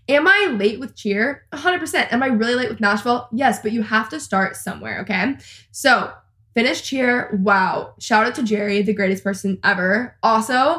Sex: female